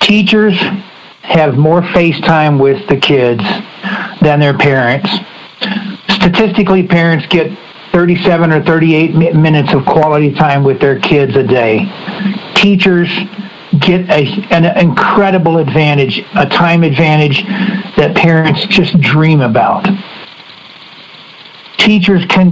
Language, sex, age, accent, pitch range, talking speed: English, male, 60-79, American, 155-195 Hz, 110 wpm